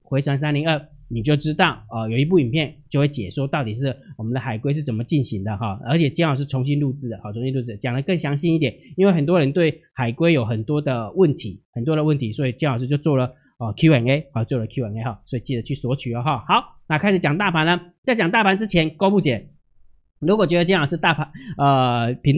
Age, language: 20-39, Chinese